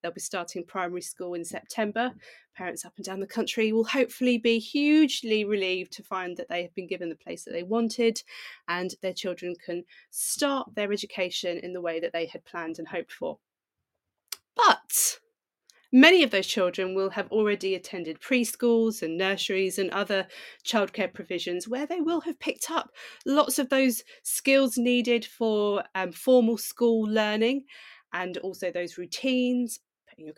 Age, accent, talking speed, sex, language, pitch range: 30-49, British, 170 wpm, female, English, 180-250 Hz